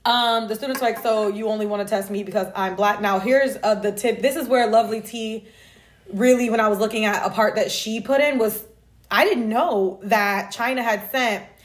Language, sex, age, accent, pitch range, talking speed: English, female, 20-39, American, 215-270 Hz, 225 wpm